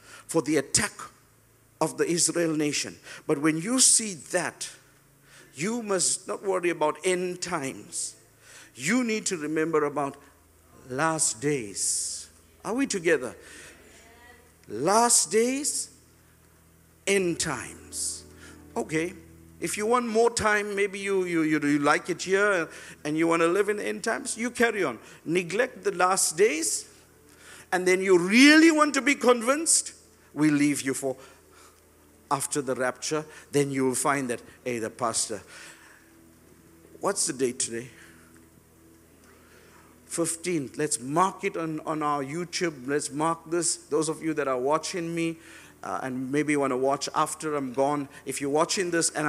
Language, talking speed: English, 150 wpm